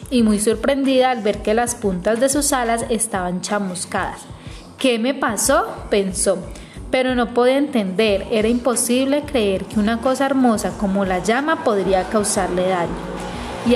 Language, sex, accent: Spanish, female, Colombian